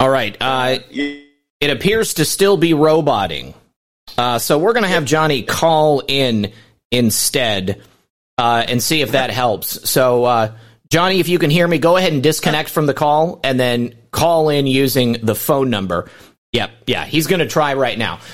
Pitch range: 130-170 Hz